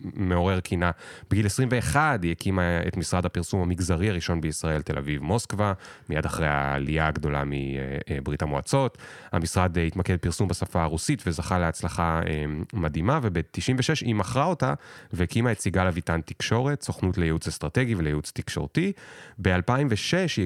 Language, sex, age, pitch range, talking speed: Hebrew, male, 30-49, 85-120 Hz, 130 wpm